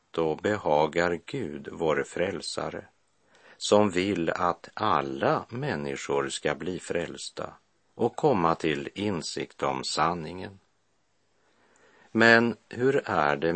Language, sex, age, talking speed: Swedish, male, 50-69, 100 wpm